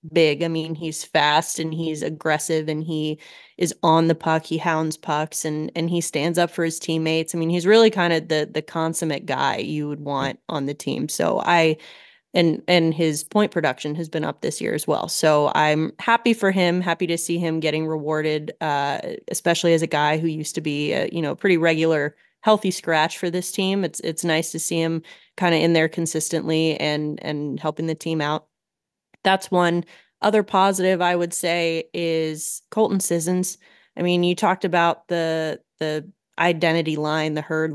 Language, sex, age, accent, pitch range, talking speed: English, female, 20-39, American, 155-175 Hz, 195 wpm